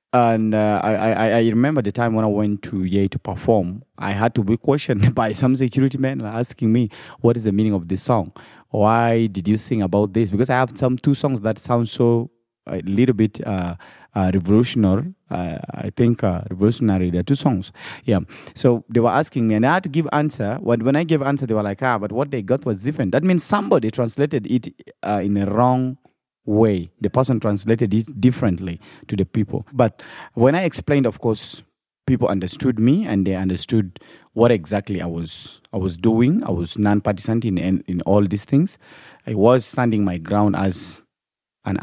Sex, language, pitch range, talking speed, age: male, English, 100-130 Hz, 205 wpm, 30-49